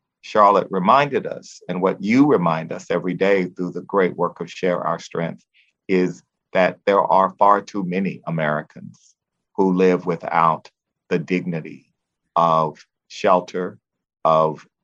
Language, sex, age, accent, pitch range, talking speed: English, male, 50-69, American, 85-95 Hz, 140 wpm